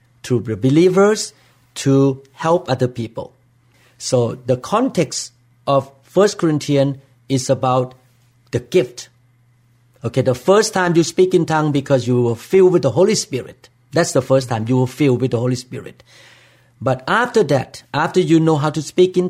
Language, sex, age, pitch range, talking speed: English, male, 50-69, 125-170 Hz, 170 wpm